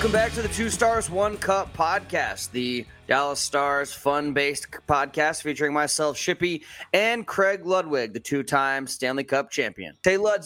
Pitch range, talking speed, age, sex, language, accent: 150-190 Hz, 155 wpm, 20-39, male, English, American